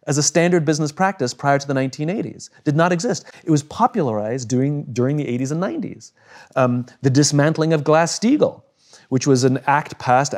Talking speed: 180 wpm